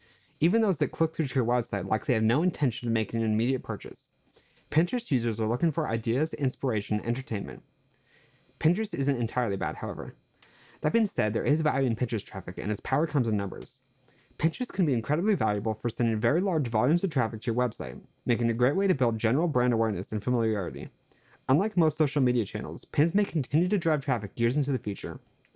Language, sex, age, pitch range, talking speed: English, male, 30-49, 110-150 Hz, 205 wpm